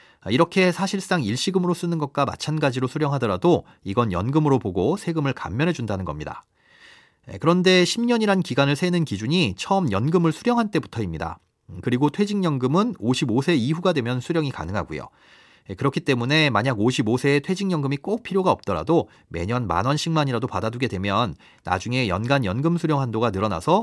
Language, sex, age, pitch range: Korean, male, 40-59, 105-165 Hz